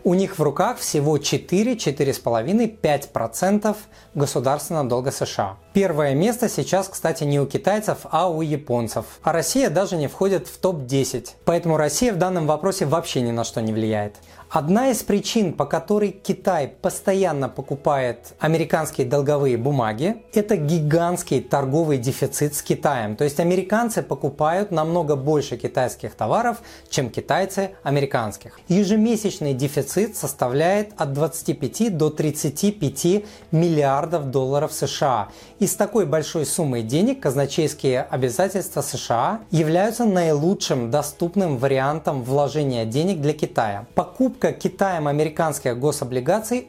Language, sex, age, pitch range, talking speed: Russian, male, 20-39, 140-190 Hz, 125 wpm